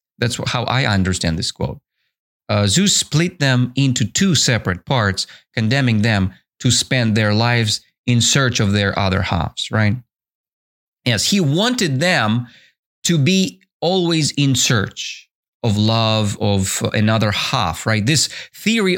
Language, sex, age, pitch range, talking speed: English, male, 30-49, 105-130 Hz, 140 wpm